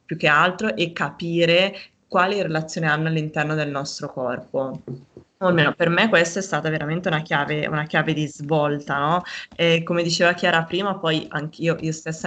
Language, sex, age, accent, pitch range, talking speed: Italian, female, 20-39, native, 155-185 Hz, 175 wpm